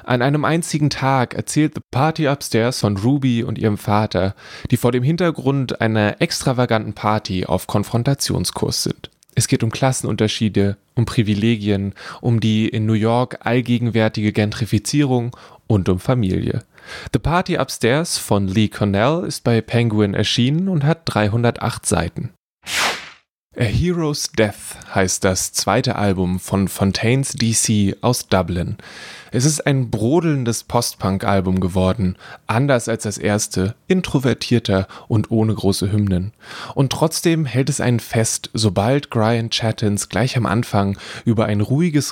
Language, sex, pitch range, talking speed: German, male, 100-130 Hz, 135 wpm